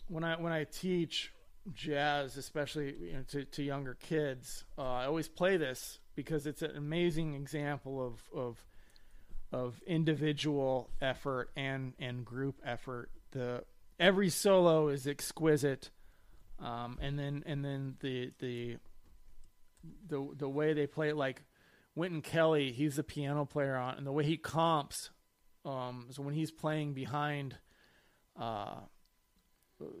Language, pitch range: German, 130-155 Hz